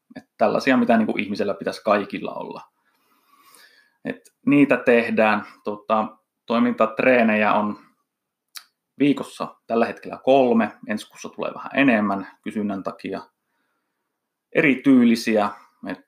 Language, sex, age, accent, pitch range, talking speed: Finnish, male, 30-49, native, 105-135 Hz, 90 wpm